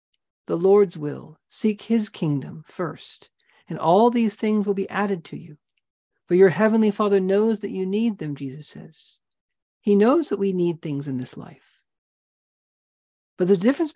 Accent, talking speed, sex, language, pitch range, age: American, 170 wpm, male, English, 170-210 Hz, 50-69